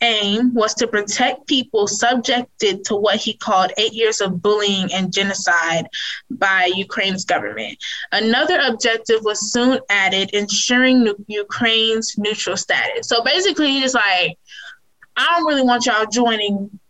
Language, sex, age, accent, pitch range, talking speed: English, female, 20-39, American, 200-245 Hz, 135 wpm